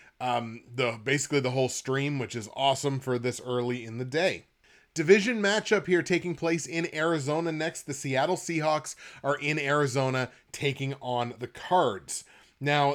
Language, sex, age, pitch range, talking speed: English, male, 30-49, 130-165 Hz, 160 wpm